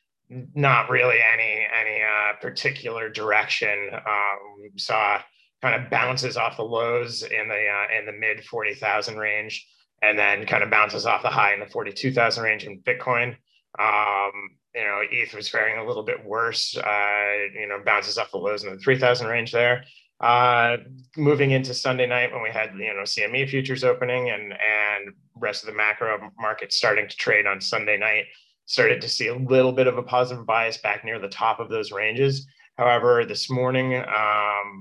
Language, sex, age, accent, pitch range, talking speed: English, male, 30-49, American, 105-130 Hz, 185 wpm